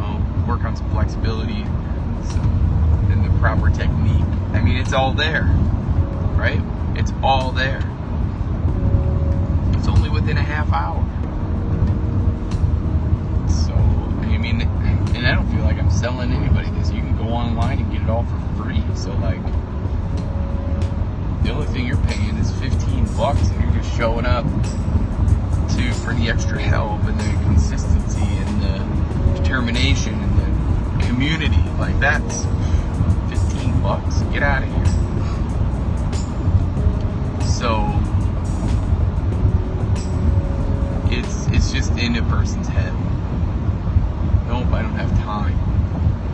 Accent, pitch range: American, 85-100 Hz